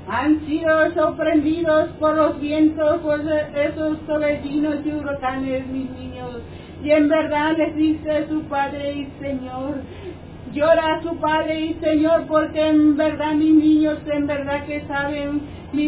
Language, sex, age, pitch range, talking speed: Spanish, female, 40-59, 280-310 Hz, 140 wpm